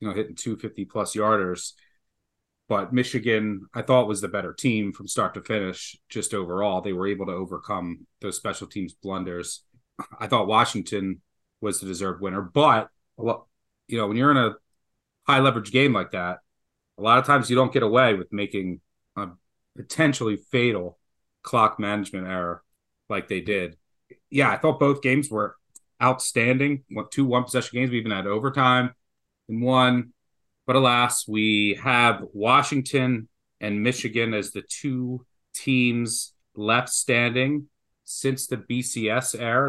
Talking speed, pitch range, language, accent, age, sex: 150 wpm, 95-130 Hz, English, American, 30-49, male